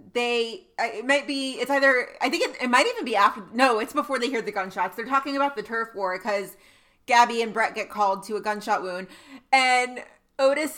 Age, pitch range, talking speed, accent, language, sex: 30-49, 205-270 Hz, 215 wpm, American, English, female